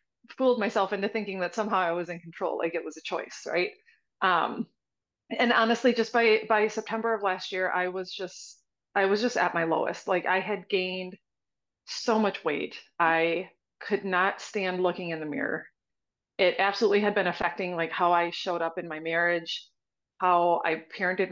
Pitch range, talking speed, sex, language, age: 175-215 Hz, 185 wpm, female, English, 30-49